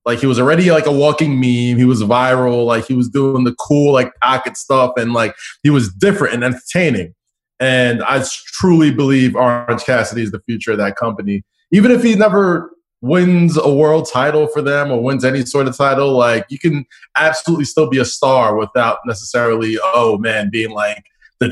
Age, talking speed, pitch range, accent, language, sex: 20-39, 195 wpm, 120-155 Hz, American, English, male